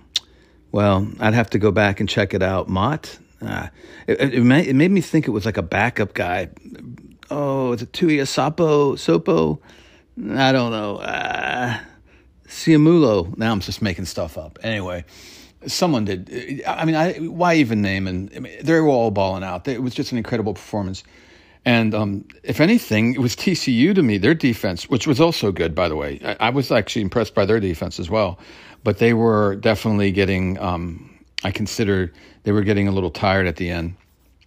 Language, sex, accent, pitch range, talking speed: English, male, American, 90-115 Hz, 200 wpm